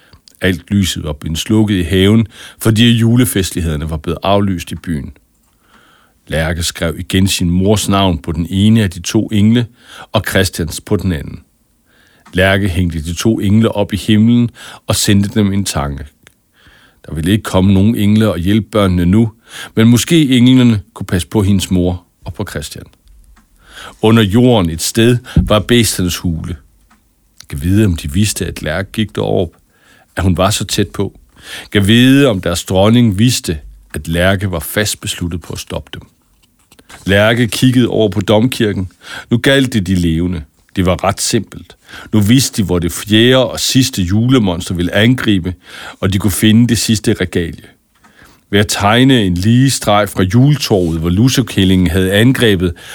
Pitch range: 90-110 Hz